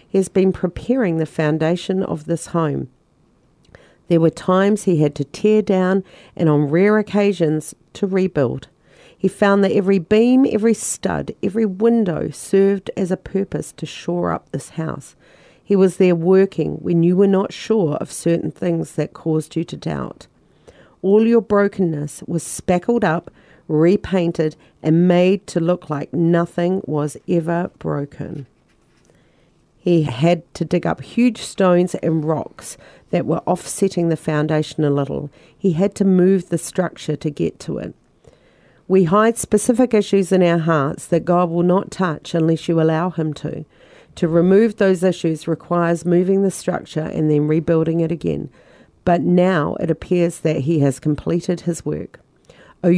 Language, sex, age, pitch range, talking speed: Bulgarian, female, 40-59, 160-195 Hz, 160 wpm